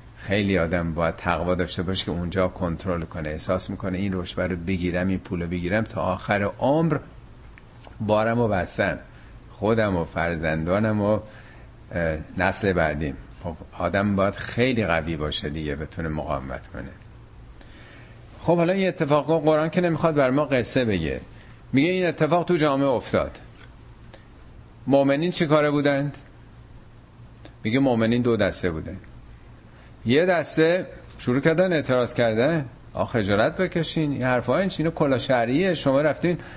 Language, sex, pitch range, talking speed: Persian, male, 100-145 Hz, 135 wpm